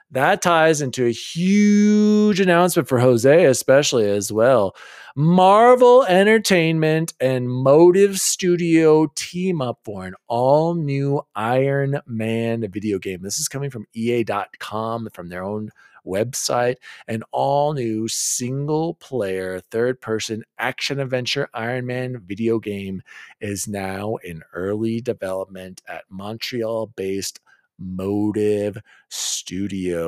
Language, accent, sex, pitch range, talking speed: English, American, male, 100-140 Hz, 105 wpm